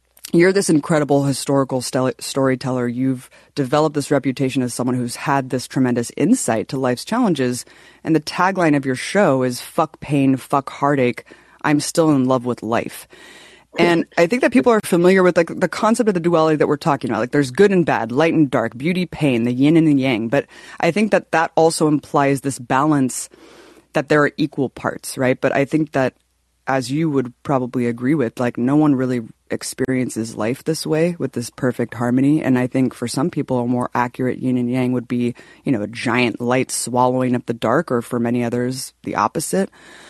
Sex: female